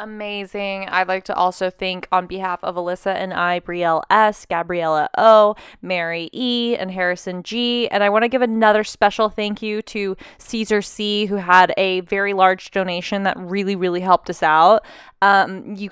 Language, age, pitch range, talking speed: English, 20-39, 180-210 Hz, 175 wpm